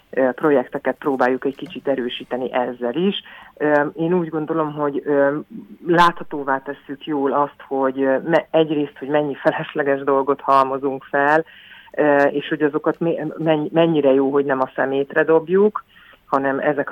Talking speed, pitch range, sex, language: 125 wpm, 135-155 Hz, female, Hungarian